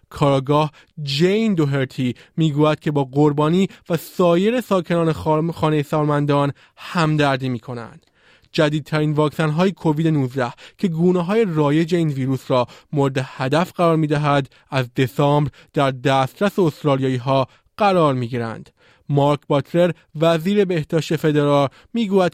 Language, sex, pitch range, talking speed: Persian, male, 140-170 Hz, 125 wpm